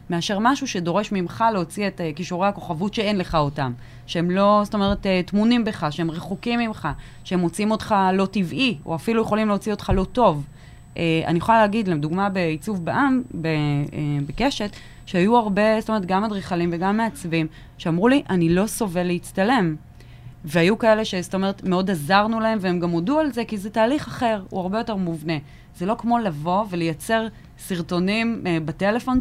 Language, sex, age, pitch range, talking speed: Hebrew, female, 20-39, 170-225 Hz, 175 wpm